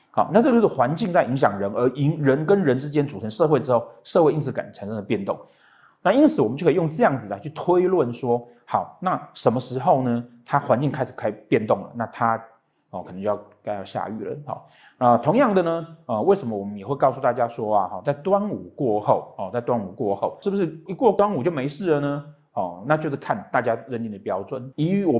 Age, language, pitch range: 30-49, Chinese, 110-155 Hz